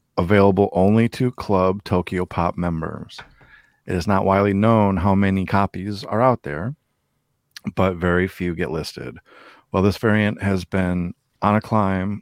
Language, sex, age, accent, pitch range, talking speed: English, male, 40-59, American, 90-110 Hz, 150 wpm